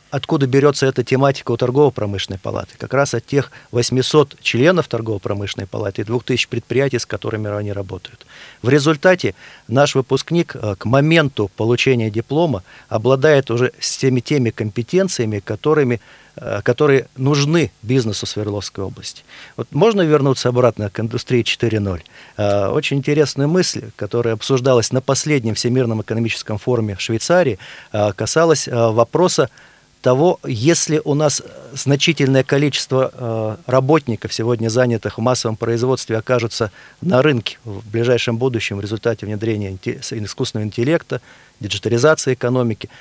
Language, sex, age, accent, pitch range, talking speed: Russian, male, 40-59, native, 110-140 Hz, 115 wpm